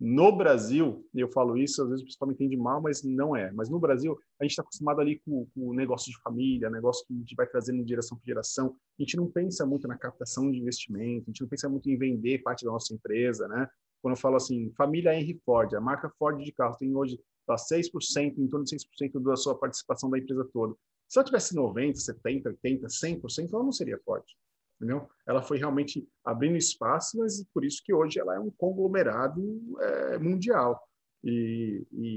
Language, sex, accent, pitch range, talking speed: Portuguese, male, Brazilian, 115-150 Hz, 210 wpm